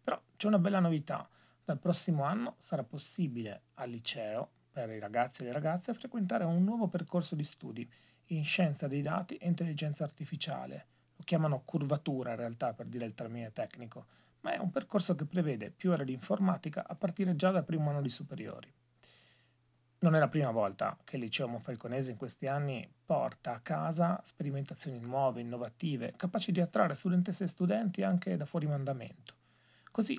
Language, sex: Italian, male